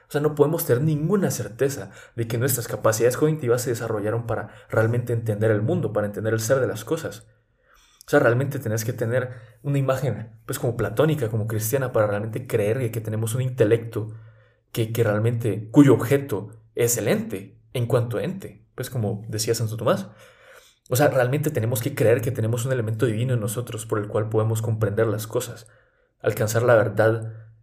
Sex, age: male, 20-39